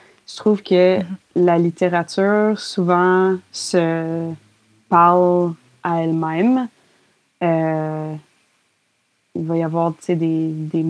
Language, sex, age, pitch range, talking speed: French, female, 20-39, 165-185 Hz, 95 wpm